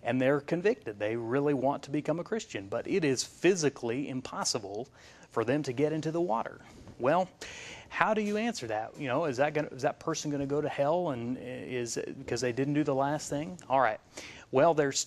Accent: American